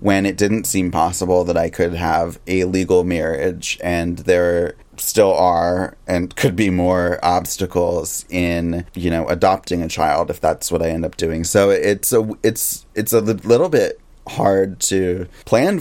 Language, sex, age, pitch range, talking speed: English, male, 20-39, 90-100 Hz, 165 wpm